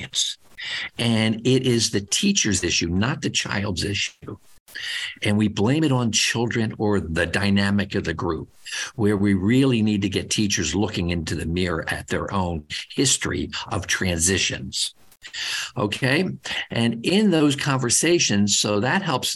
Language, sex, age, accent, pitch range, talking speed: English, male, 50-69, American, 95-125 Hz, 145 wpm